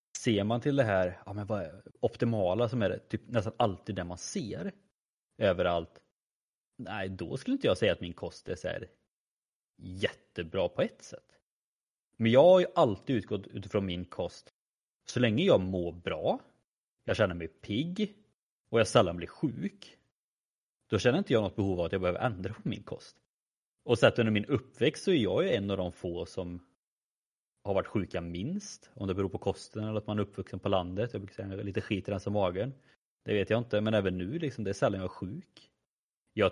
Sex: male